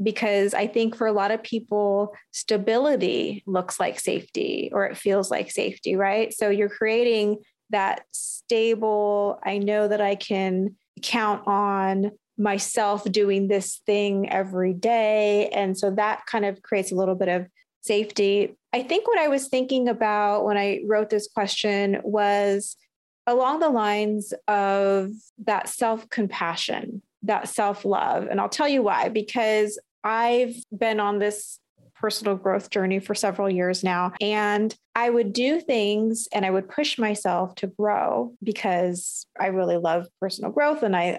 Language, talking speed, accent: English, 155 wpm, American